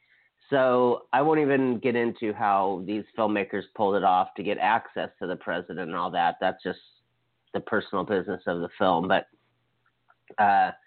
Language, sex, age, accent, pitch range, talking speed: English, male, 30-49, American, 100-115 Hz, 170 wpm